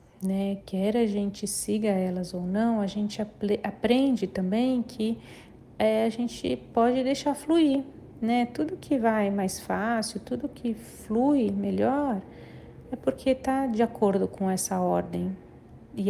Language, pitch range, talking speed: Portuguese, 190-230 Hz, 145 wpm